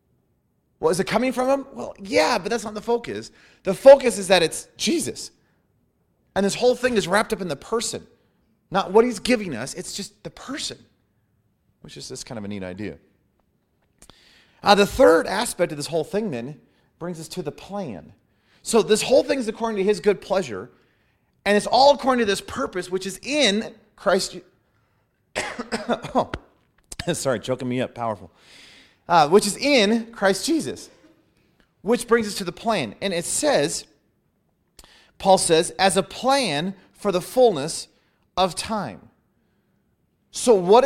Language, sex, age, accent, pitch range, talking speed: English, male, 30-49, American, 160-225 Hz, 165 wpm